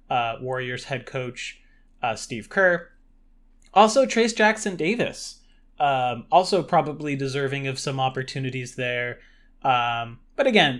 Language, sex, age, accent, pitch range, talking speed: English, male, 20-39, American, 135-180 Hz, 120 wpm